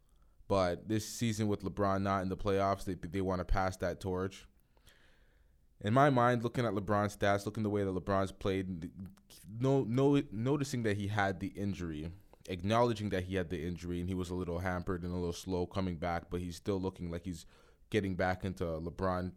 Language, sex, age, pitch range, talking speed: English, male, 20-39, 85-105 Hz, 200 wpm